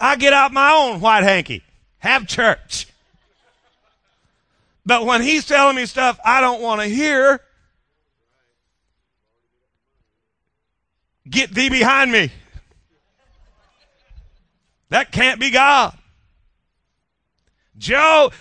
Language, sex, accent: English, male, American